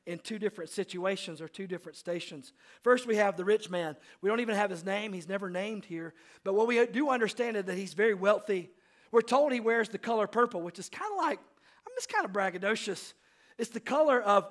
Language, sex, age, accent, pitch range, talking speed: English, male, 40-59, American, 195-245 Hz, 230 wpm